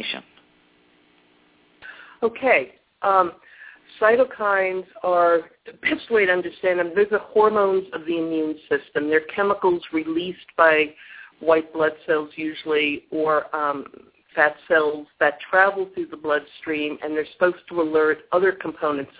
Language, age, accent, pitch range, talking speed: English, 50-69, American, 135-175 Hz, 130 wpm